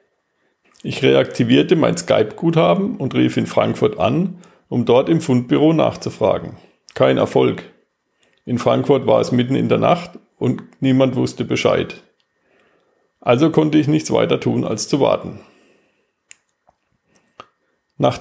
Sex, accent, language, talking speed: male, German, German, 125 wpm